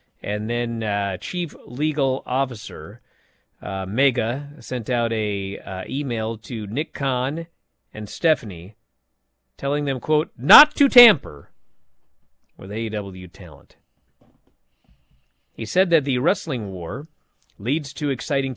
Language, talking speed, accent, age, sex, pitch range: English, 115 wpm, American, 40-59, male, 105-160 Hz